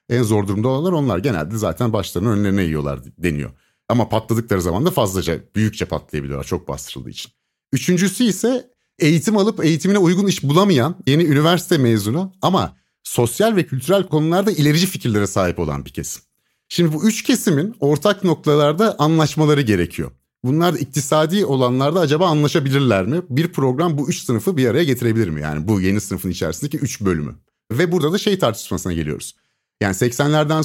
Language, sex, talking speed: Turkish, male, 160 wpm